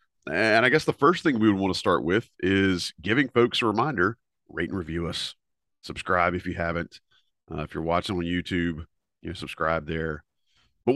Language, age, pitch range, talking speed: English, 40-59, 95-115 Hz, 195 wpm